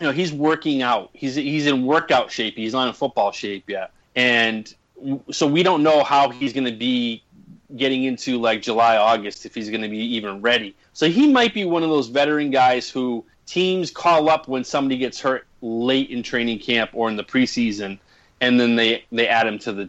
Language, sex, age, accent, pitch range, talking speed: English, male, 30-49, American, 120-150 Hz, 215 wpm